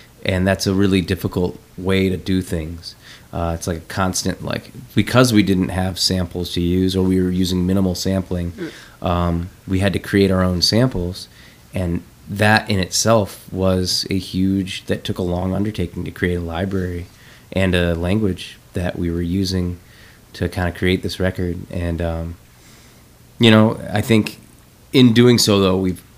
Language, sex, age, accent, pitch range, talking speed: English, male, 20-39, American, 90-100 Hz, 175 wpm